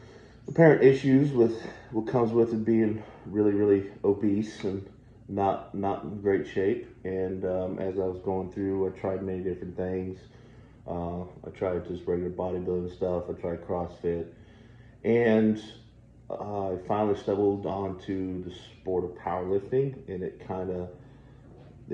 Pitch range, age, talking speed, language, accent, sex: 90-110 Hz, 30-49, 145 wpm, English, American, male